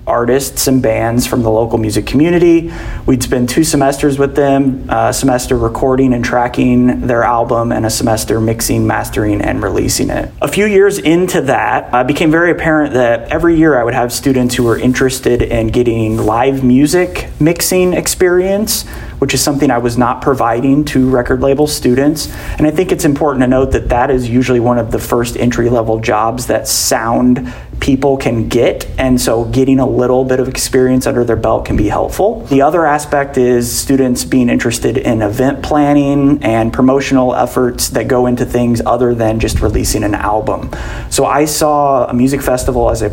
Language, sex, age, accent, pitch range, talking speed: English, male, 30-49, American, 115-140 Hz, 185 wpm